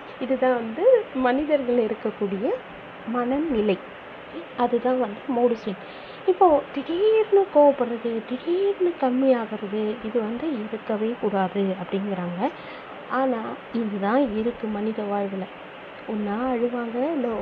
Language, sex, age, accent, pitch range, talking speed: Tamil, female, 30-49, native, 220-275 Hz, 95 wpm